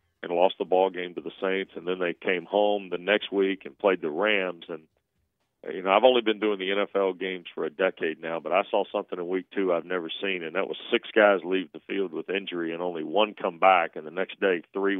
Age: 40-59